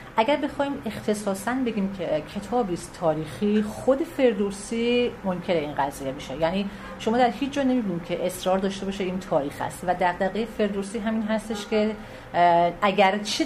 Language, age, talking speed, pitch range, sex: Persian, 40-59, 150 wpm, 175-230 Hz, female